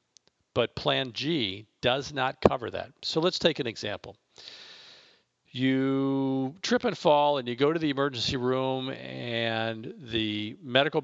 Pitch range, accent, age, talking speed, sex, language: 115-145 Hz, American, 50-69, 140 wpm, male, English